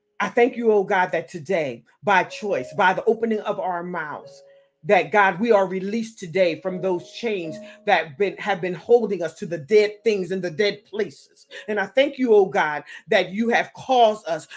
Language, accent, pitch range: English, American, 200-270 Hz